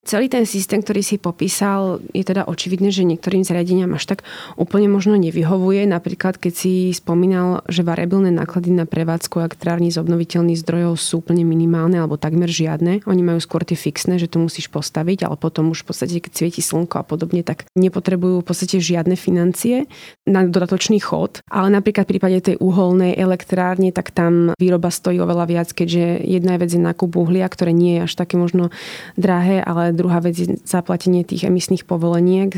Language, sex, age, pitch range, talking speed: Slovak, female, 20-39, 170-185 Hz, 180 wpm